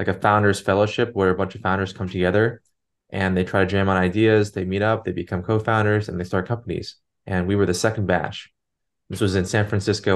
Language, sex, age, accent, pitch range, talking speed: English, male, 20-39, American, 95-110 Hz, 230 wpm